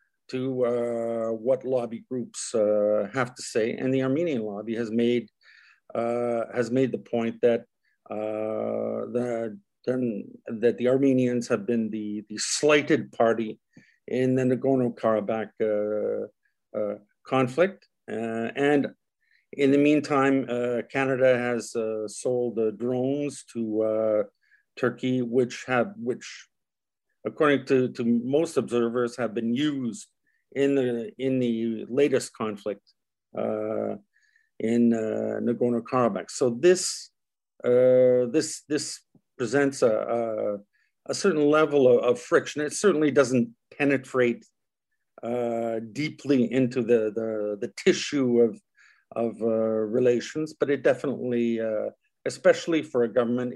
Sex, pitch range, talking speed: male, 115-135 Hz, 125 wpm